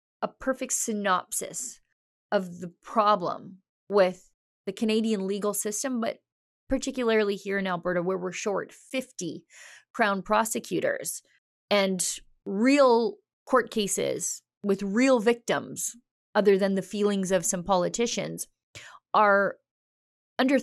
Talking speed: 110 wpm